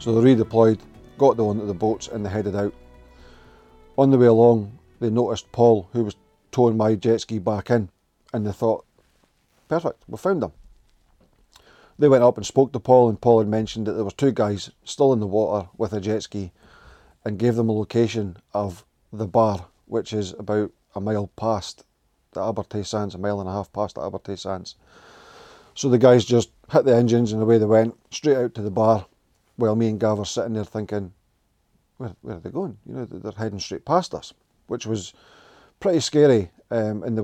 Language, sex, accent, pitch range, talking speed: English, male, British, 105-120 Hz, 205 wpm